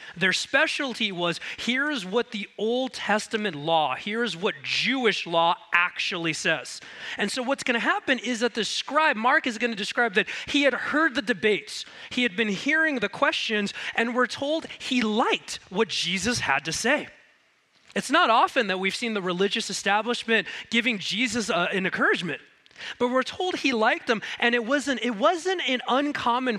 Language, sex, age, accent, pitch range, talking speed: English, male, 30-49, American, 190-260 Hz, 175 wpm